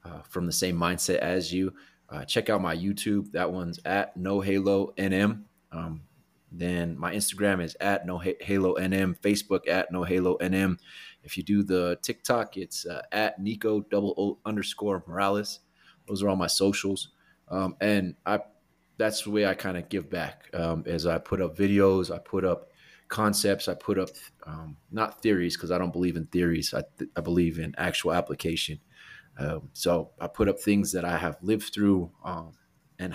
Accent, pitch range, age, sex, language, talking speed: American, 90-105 Hz, 30-49, male, English, 185 wpm